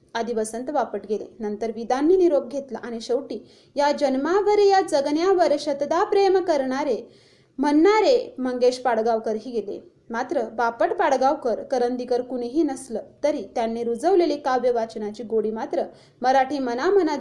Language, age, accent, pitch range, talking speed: Marathi, 30-49, native, 235-315 Hz, 85 wpm